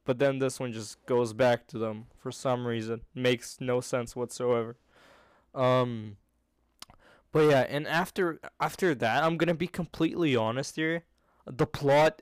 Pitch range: 120-140 Hz